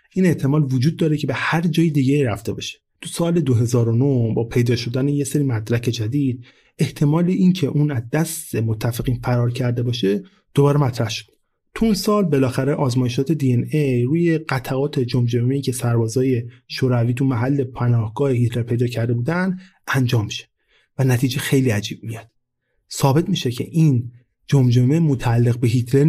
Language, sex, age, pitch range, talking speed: Persian, male, 30-49, 120-150 Hz, 155 wpm